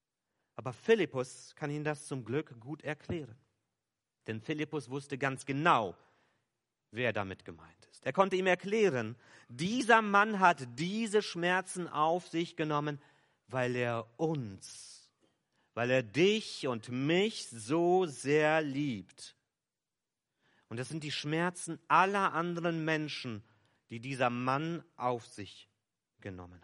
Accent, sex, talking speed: German, male, 125 wpm